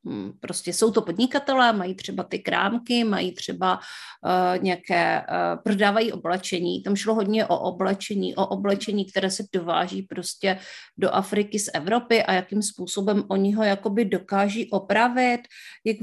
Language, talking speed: Czech, 140 wpm